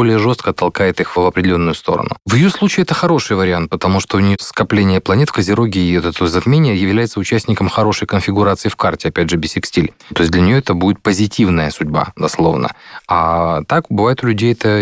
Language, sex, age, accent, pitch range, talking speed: Russian, male, 20-39, native, 90-110 Hz, 200 wpm